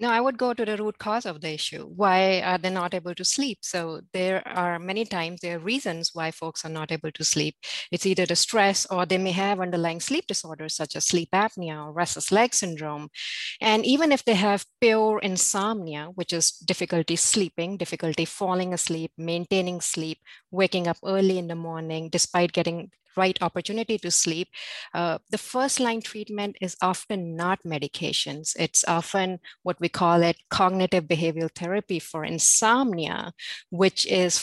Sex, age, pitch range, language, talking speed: female, 30-49, 165-205 Hz, English, 175 wpm